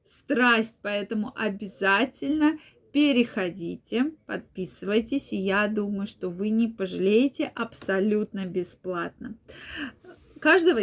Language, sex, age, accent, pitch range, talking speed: Russian, female, 20-39, native, 205-265 Hz, 85 wpm